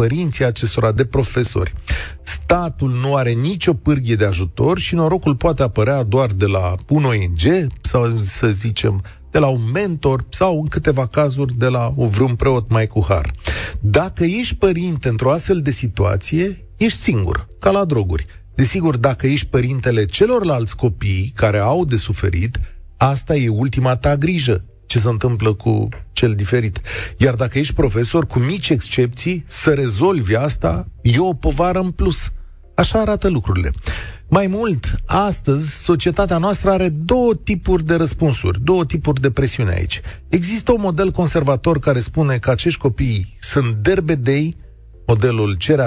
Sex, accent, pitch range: male, native, 105-160 Hz